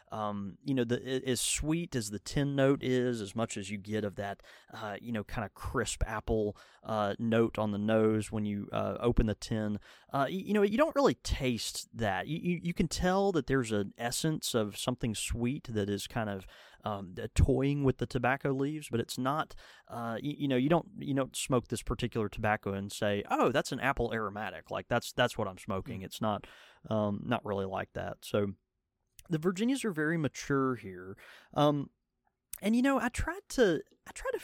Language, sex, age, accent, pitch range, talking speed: English, male, 30-49, American, 105-150 Hz, 205 wpm